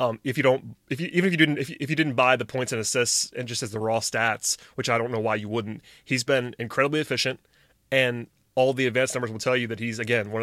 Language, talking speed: English, 280 wpm